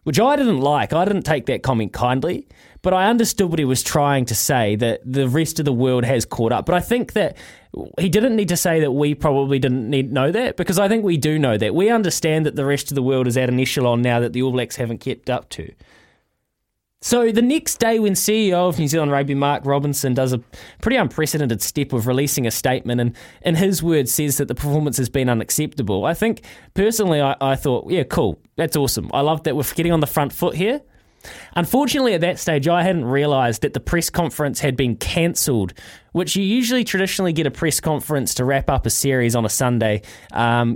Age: 20-39